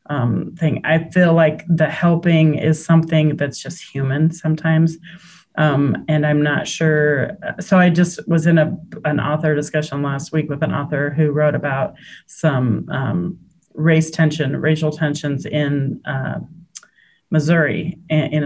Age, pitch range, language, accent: 30-49, 145-165 Hz, English, American